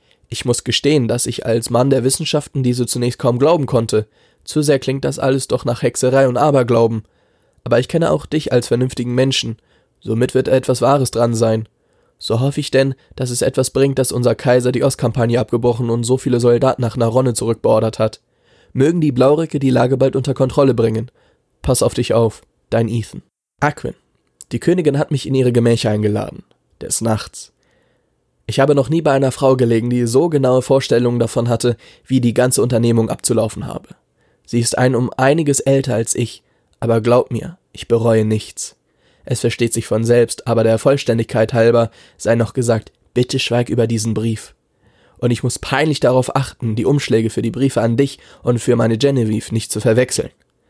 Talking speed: 185 wpm